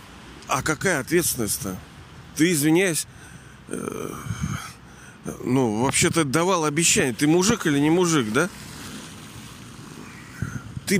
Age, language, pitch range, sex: 40-59, Russian, 125-165 Hz, male